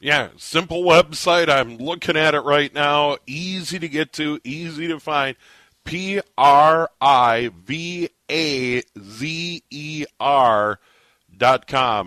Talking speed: 85 wpm